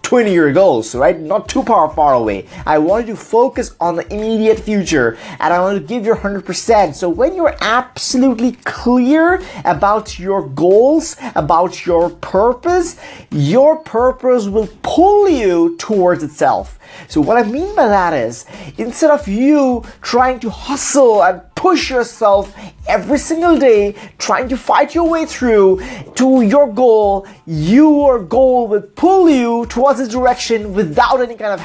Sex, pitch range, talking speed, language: male, 200-270 Hz, 155 wpm, English